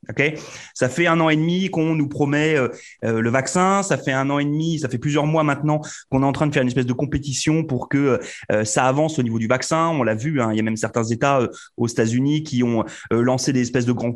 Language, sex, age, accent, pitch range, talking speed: French, male, 30-49, French, 130-170 Hz, 270 wpm